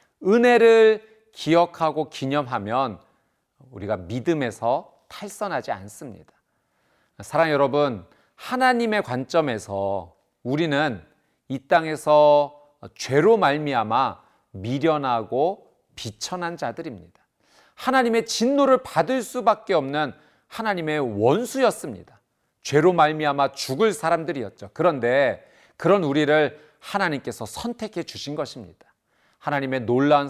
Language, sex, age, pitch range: Korean, male, 40-59, 125-185 Hz